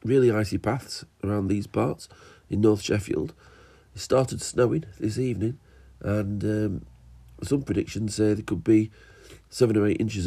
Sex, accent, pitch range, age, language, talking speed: male, British, 90-105 Hz, 40-59, English, 150 wpm